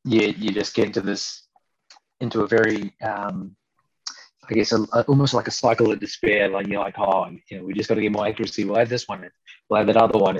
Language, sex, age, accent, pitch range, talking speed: English, male, 20-39, Australian, 100-120 Hz, 250 wpm